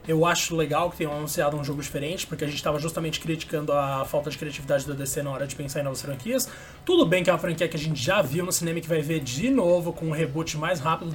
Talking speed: 280 wpm